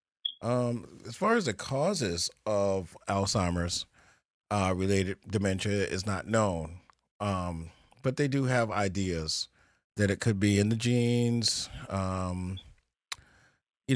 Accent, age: American, 40-59